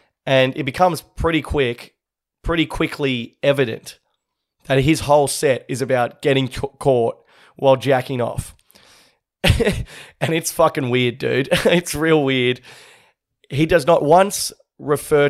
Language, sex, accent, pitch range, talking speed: English, male, Australian, 125-155 Hz, 125 wpm